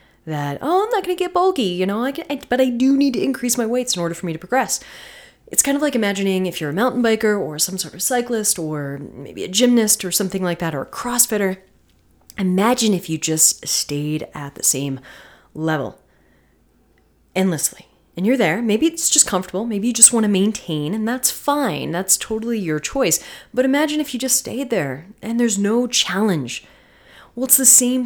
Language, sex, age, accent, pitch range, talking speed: English, female, 30-49, American, 155-220 Hz, 210 wpm